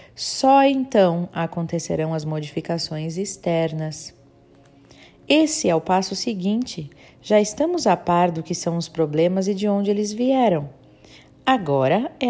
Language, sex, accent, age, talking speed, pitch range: Portuguese, female, Brazilian, 40-59, 130 wpm, 155-205 Hz